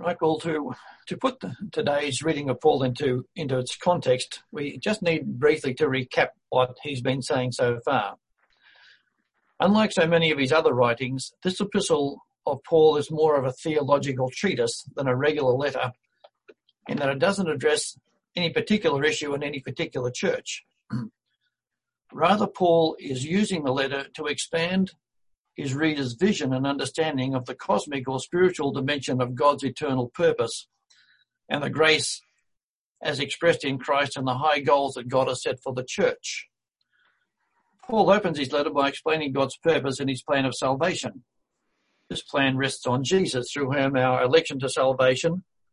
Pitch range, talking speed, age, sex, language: 130-165 Hz, 165 wpm, 60-79, male, English